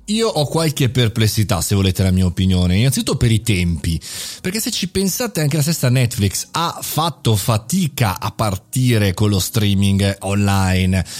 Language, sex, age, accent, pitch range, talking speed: Italian, male, 30-49, native, 105-140 Hz, 160 wpm